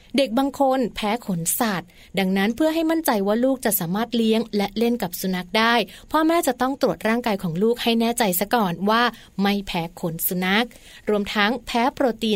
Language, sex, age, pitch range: Thai, female, 30-49, 190-240 Hz